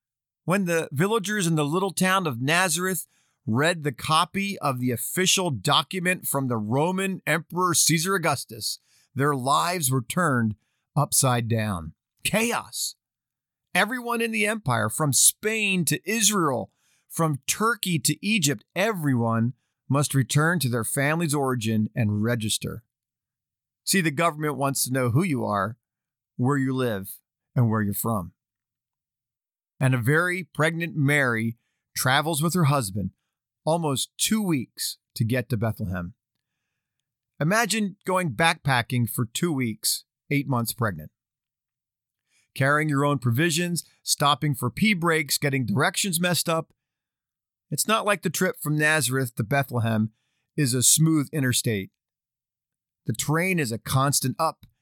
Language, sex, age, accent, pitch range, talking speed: English, male, 50-69, American, 120-165 Hz, 135 wpm